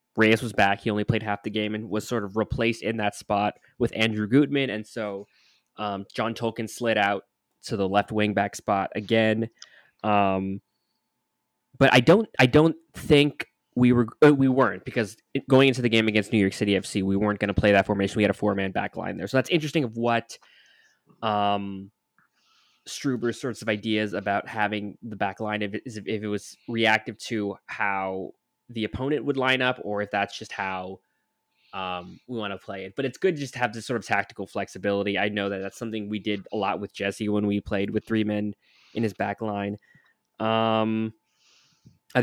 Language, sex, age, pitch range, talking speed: English, male, 20-39, 100-120 Hz, 205 wpm